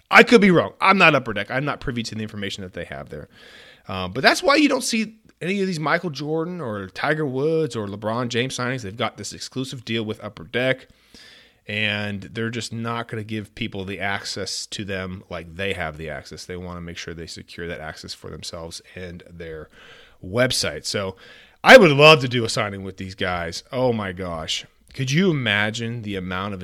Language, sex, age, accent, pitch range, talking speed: English, male, 30-49, American, 100-160 Hz, 215 wpm